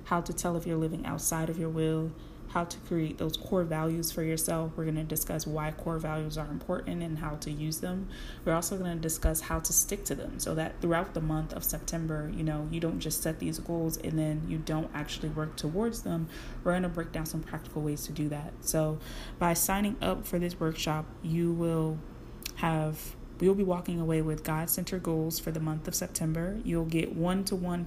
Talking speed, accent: 210 wpm, American